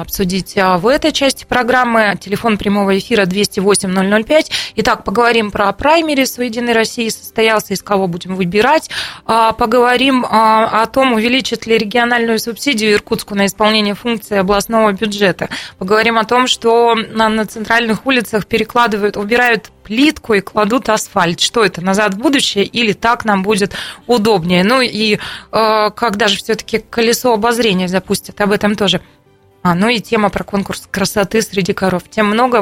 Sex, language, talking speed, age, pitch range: female, Russian, 145 wpm, 20-39, 200-235 Hz